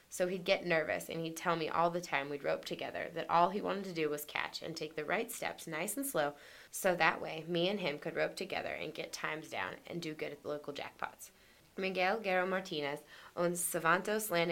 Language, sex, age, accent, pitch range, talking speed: English, female, 20-39, American, 155-190 Hz, 230 wpm